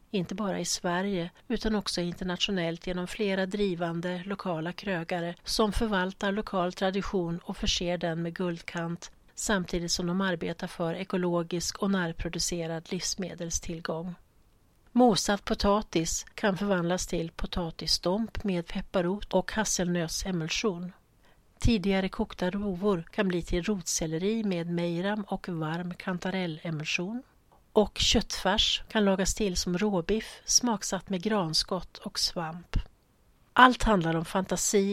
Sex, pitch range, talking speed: female, 175-205 Hz, 115 wpm